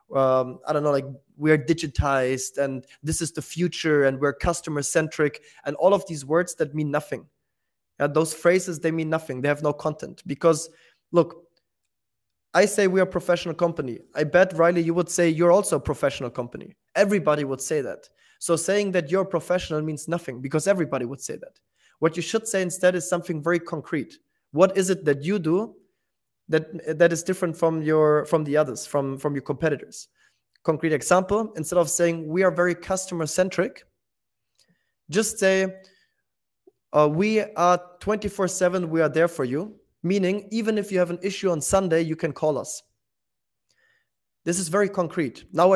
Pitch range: 150-185 Hz